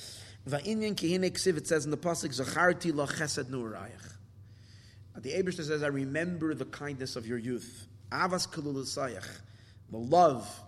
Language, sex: English, male